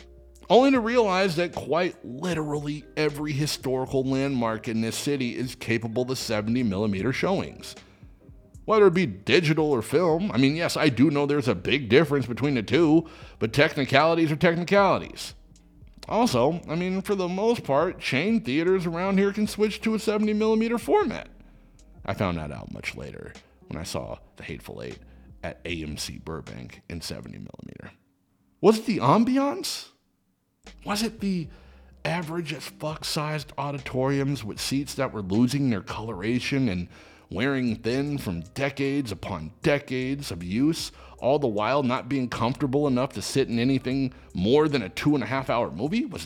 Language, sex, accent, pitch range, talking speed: English, male, American, 115-185 Hz, 150 wpm